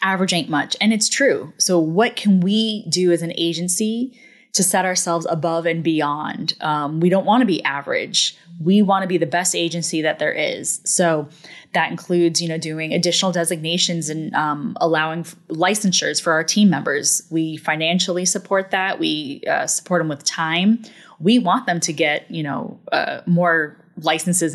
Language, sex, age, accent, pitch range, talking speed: English, female, 20-39, American, 165-195 Hz, 180 wpm